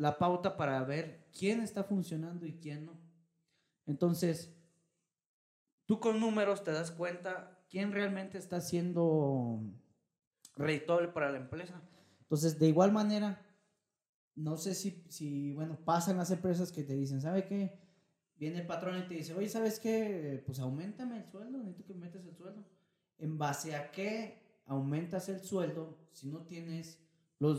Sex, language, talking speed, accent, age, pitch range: male, Spanish, 155 wpm, Mexican, 30-49, 150-185 Hz